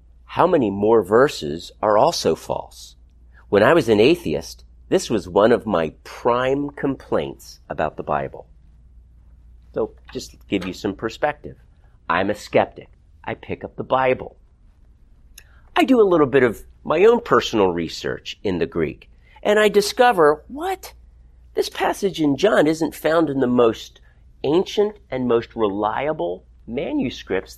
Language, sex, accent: English, male, American